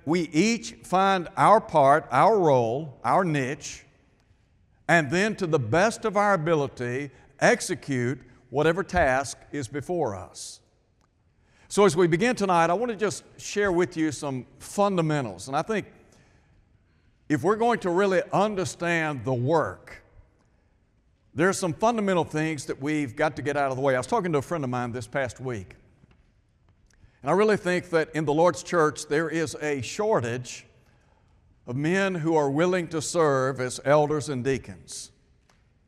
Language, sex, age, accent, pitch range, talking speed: English, male, 60-79, American, 120-170 Hz, 160 wpm